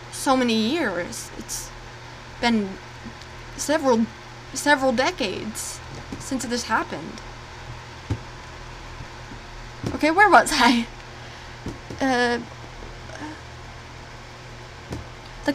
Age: 10-29